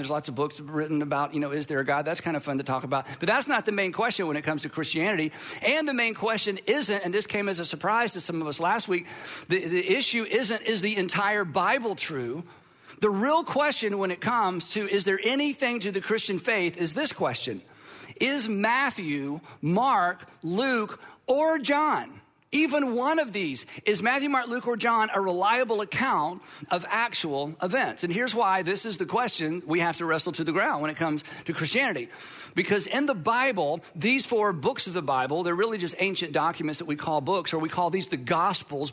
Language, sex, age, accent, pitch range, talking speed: English, male, 50-69, American, 165-230 Hz, 215 wpm